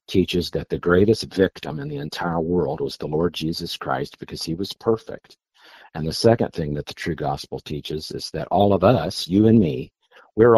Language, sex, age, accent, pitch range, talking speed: English, male, 50-69, American, 85-105 Hz, 205 wpm